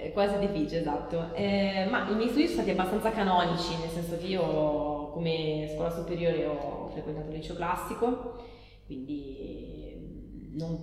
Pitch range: 150-175 Hz